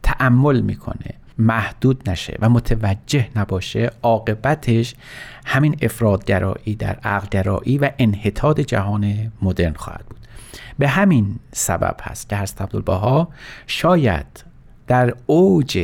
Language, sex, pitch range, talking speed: Persian, male, 100-130 Hz, 105 wpm